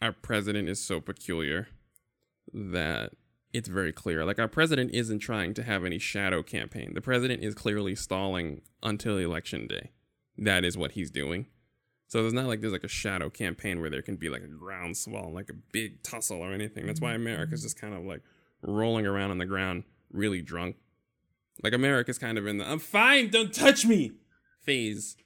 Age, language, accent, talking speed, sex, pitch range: 20-39, English, American, 190 wpm, male, 95-115 Hz